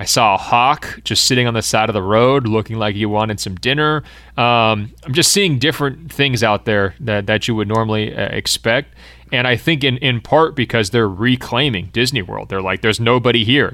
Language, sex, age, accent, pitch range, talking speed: English, male, 30-49, American, 105-130 Hz, 210 wpm